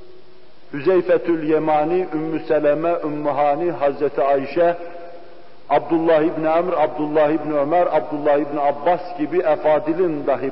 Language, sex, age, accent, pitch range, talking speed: Turkish, male, 50-69, native, 155-200 Hz, 115 wpm